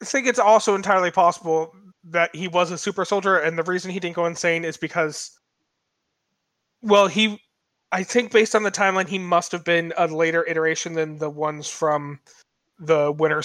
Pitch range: 155-195 Hz